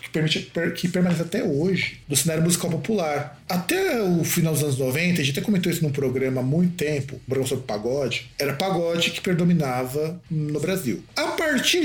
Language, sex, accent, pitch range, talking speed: Portuguese, male, Brazilian, 140-200 Hz, 190 wpm